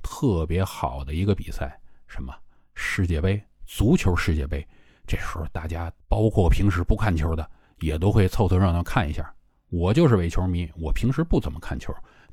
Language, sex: Chinese, male